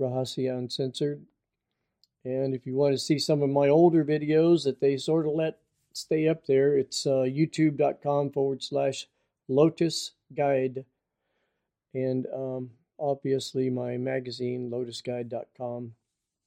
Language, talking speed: English, 125 wpm